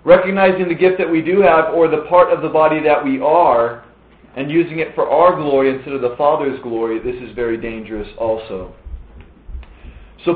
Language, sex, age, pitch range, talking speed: English, male, 40-59, 130-170 Hz, 190 wpm